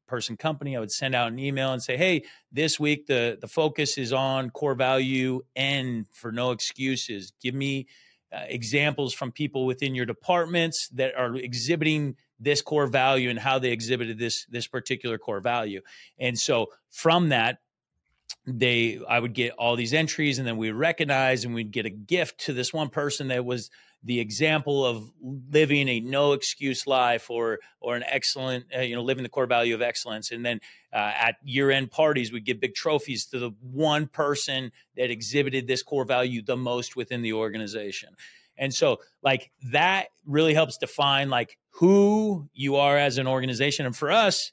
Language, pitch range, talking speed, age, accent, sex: English, 120-140 Hz, 185 wpm, 30-49, American, male